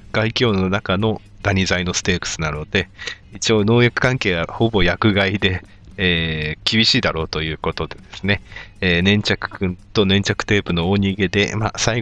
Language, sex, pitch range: Japanese, male, 90-110 Hz